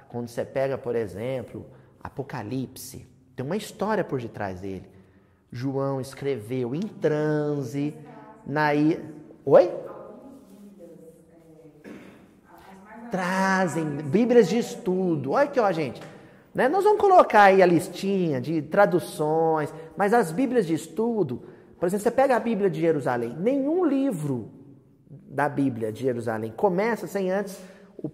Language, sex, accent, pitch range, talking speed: Portuguese, male, Brazilian, 145-205 Hz, 120 wpm